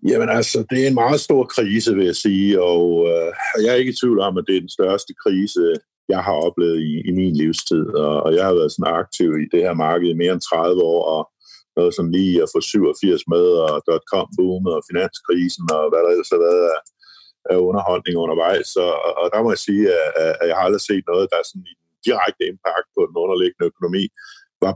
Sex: male